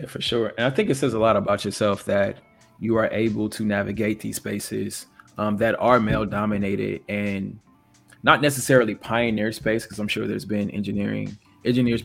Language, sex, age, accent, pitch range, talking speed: English, male, 20-39, American, 100-115 Hz, 185 wpm